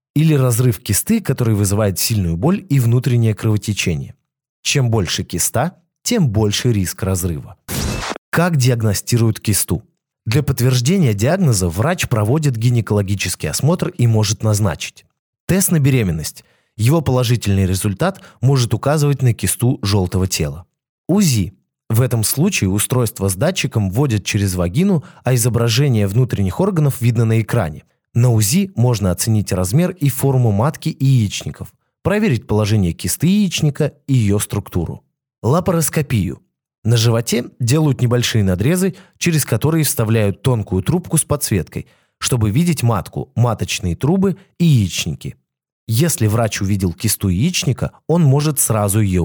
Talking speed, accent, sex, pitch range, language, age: 125 wpm, native, male, 105-145 Hz, Russian, 20-39